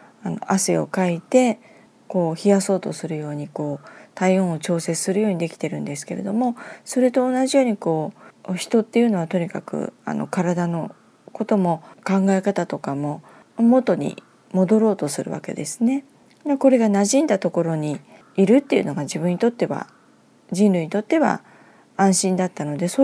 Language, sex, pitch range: Japanese, female, 175-250 Hz